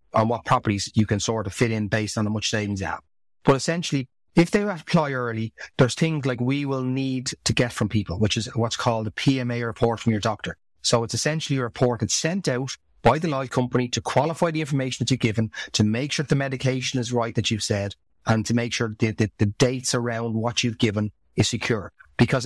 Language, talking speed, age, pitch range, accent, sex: English, 235 wpm, 30-49, 115-135 Hz, Irish, male